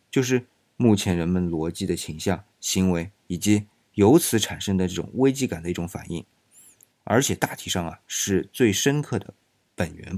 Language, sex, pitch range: Chinese, male, 90-125 Hz